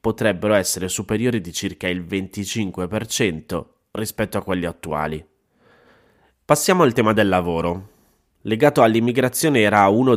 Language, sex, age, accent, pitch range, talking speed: Italian, male, 20-39, native, 90-110 Hz, 120 wpm